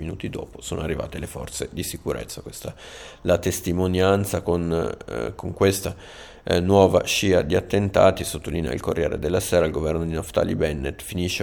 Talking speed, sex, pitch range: 160 wpm, male, 80-95 Hz